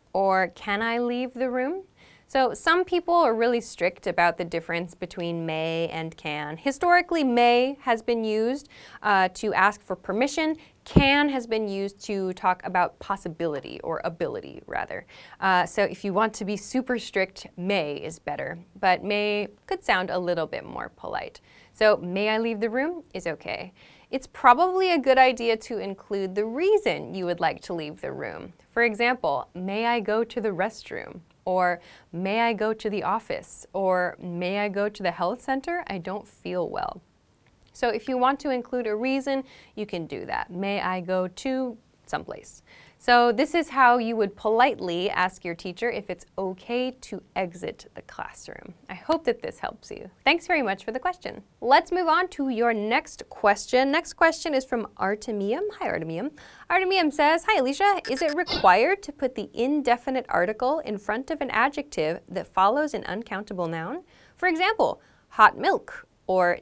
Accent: American